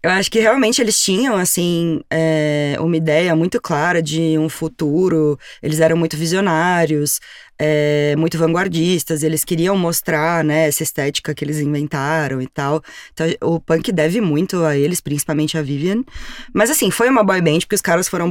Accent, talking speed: Brazilian, 175 wpm